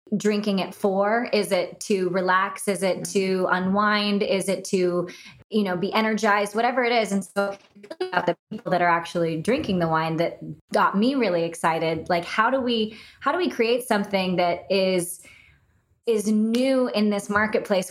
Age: 20-39